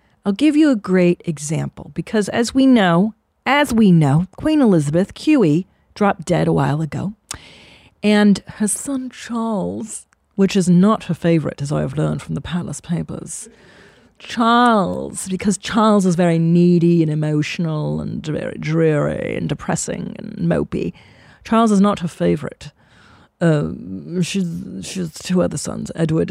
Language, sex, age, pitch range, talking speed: English, female, 40-59, 160-205 Hz, 150 wpm